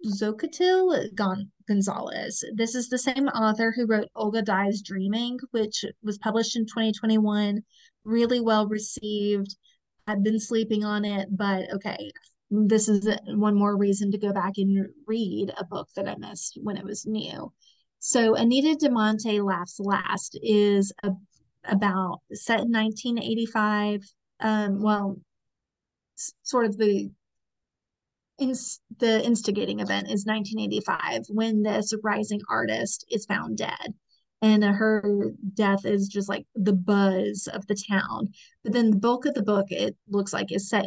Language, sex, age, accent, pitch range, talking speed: English, female, 30-49, American, 200-225 Hz, 140 wpm